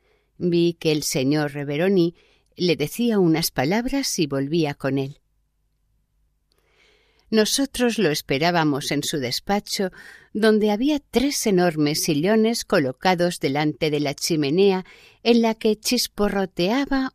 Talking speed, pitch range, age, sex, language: 115 wpm, 155-215 Hz, 50-69, female, Spanish